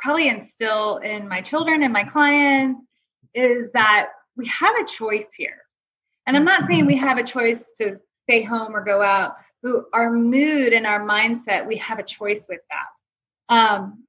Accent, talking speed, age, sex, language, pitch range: American, 180 wpm, 20-39, female, English, 220-305 Hz